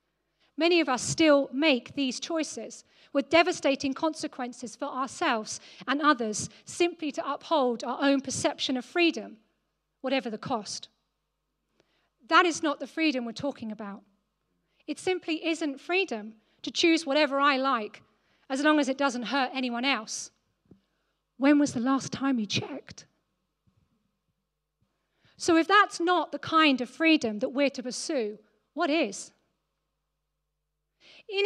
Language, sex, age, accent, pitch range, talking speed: English, female, 40-59, British, 250-320 Hz, 135 wpm